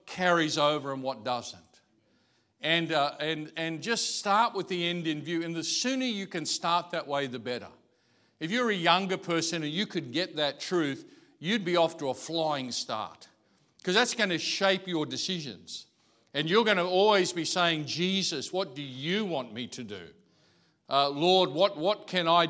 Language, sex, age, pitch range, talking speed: English, male, 50-69, 140-175 Hz, 190 wpm